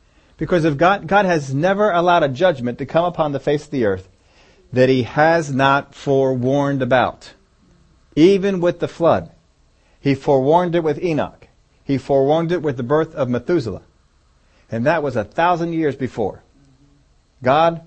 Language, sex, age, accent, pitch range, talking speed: English, male, 40-59, American, 110-155 Hz, 160 wpm